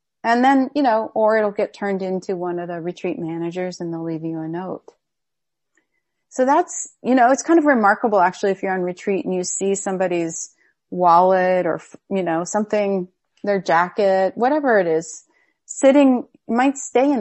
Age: 30-49